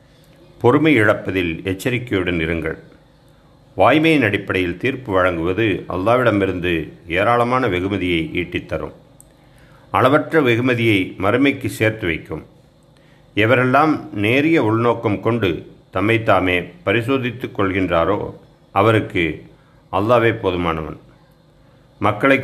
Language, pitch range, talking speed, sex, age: Tamil, 100-135 Hz, 75 wpm, male, 50-69